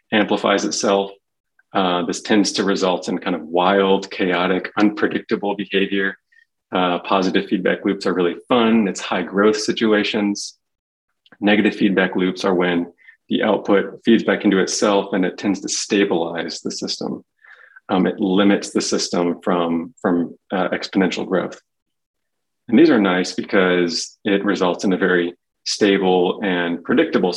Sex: male